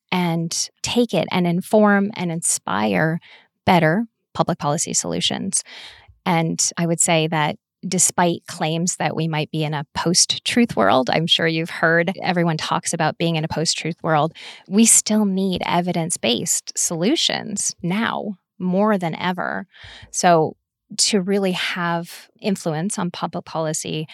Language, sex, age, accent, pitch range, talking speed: English, female, 20-39, American, 160-195 Hz, 135 wpm